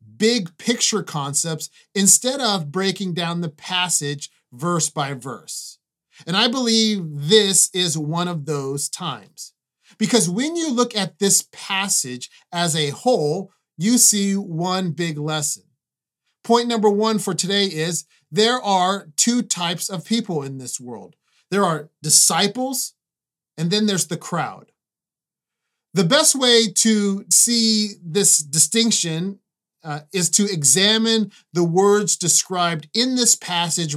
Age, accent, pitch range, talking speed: 30-49, American, 160-210 Hz, 130 wpm